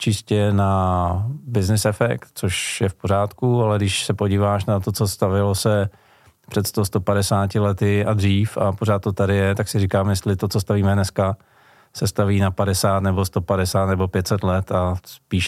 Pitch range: 95-110 Hz